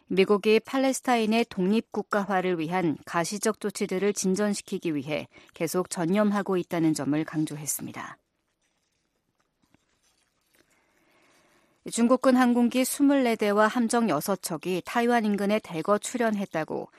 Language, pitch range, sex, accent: Korean, 175-225 Hz, female, native